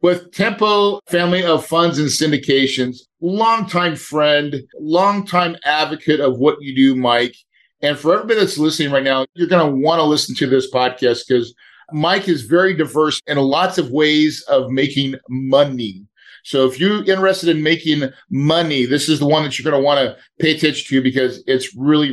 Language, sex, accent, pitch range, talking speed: English, male, American, 125-155 Hz, 180 wpm